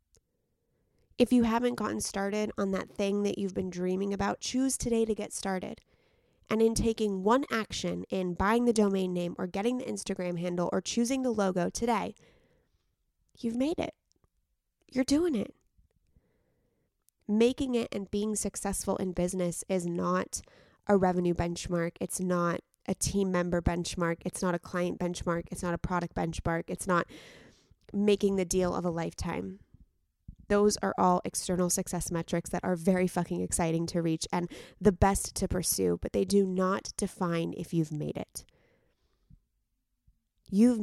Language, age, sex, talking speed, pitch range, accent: English, 20-39, female, 160 wpm, 175-205 Hz, American